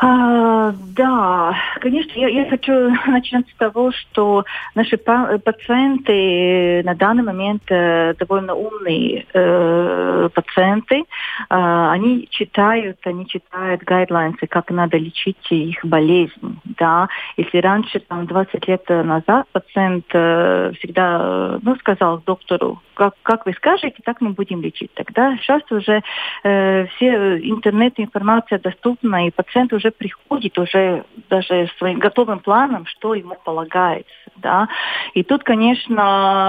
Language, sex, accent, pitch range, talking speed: Russian, female, native, 180-225 Hz, 120 wpm